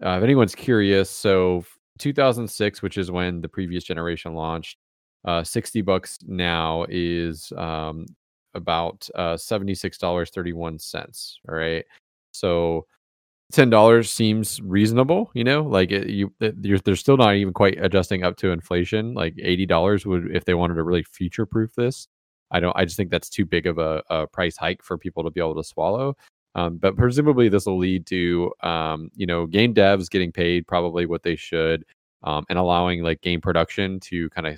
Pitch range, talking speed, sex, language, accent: 85-100 Hz, 175 wpm, male, English, American